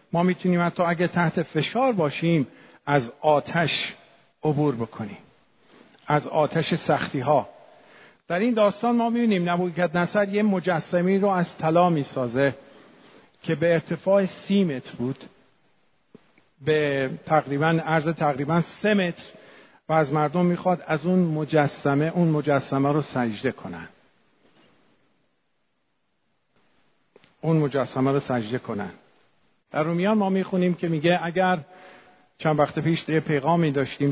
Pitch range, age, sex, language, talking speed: 140-175 Hz, 50-69, male, Persian, 125 wpm